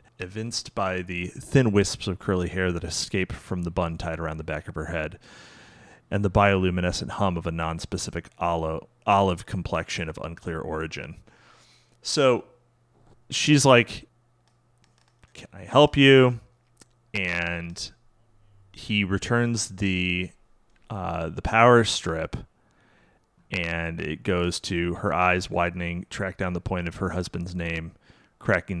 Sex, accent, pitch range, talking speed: male, American, 80-100 Hz, 130 wpm